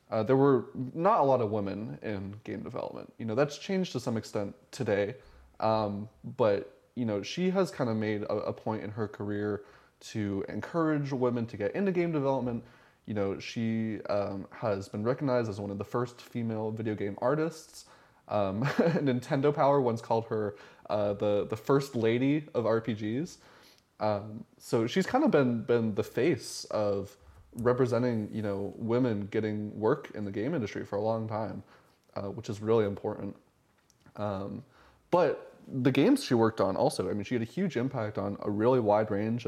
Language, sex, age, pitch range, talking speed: English, male, 20-39, 105-125 Hz, 180 wpm